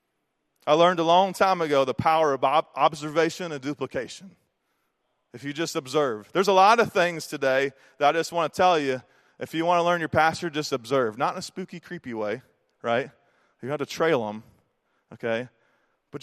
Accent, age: American, 30-49